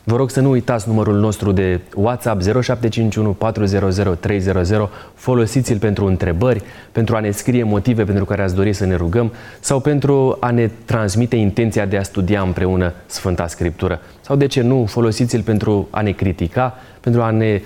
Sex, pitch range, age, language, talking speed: male, 95-120 Hz, 30-49, Romanian, 165 wpm